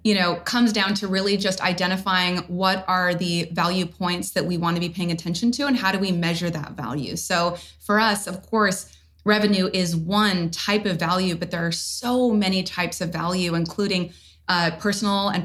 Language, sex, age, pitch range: English, female, 20-39, 170-200 Hz